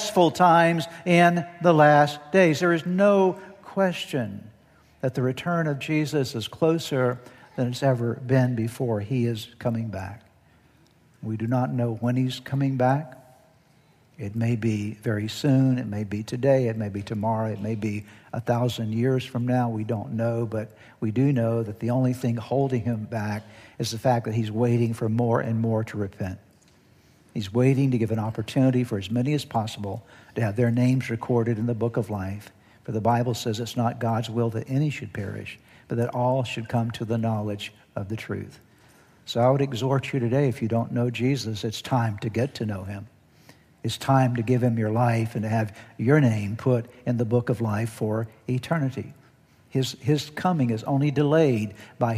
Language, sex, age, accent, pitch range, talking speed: English, male, 60-79, American, 110-130 Hz, 195 wpm